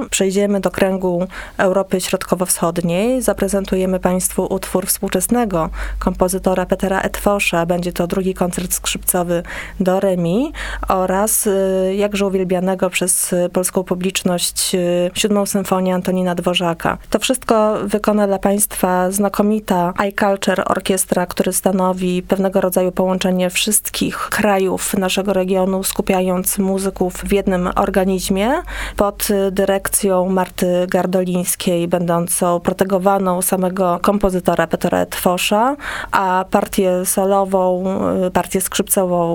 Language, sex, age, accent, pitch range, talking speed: Polish, female, 30-49, native, 180-200 Hz, 100 wpm